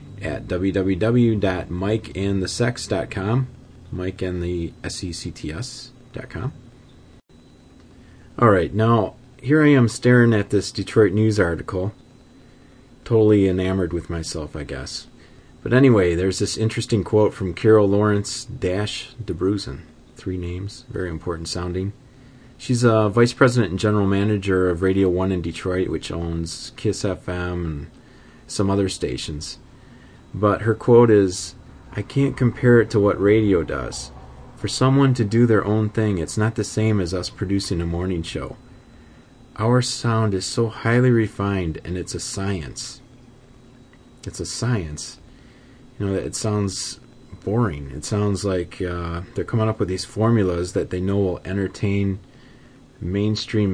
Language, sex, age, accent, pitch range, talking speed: English, male, 30-49, American, 90-120 Hz, 135 wpm